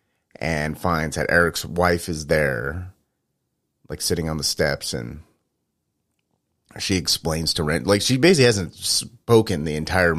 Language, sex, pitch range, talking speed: English, male, 75-100 Hz, 140 wpm